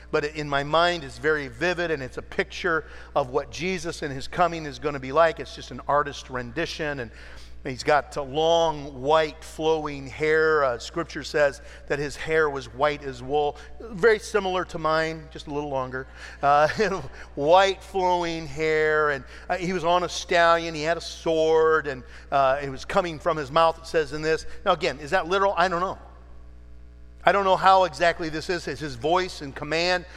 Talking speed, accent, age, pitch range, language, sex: 195 wpm, American, 50-69, 130-170 Hz, English, male